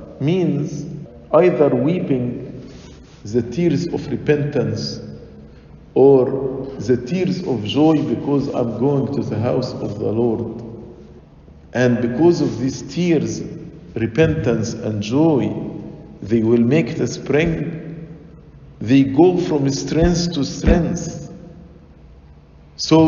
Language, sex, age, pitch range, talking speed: English, male, 50-69, 115-155 Hz, 105 wpm